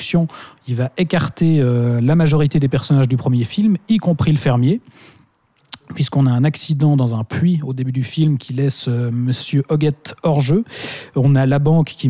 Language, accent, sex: French, French, male